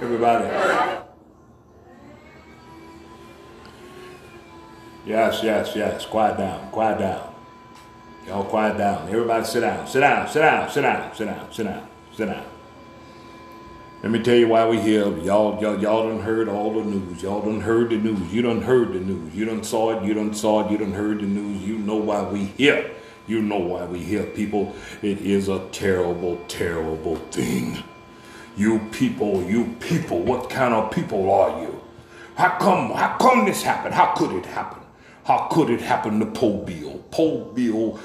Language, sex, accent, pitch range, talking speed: English, male, American, 100-120 Hz, 175 wpm